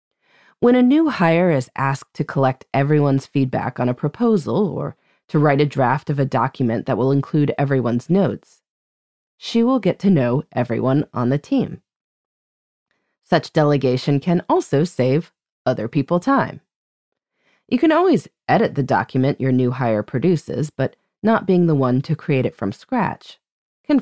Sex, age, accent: female, 30-49, American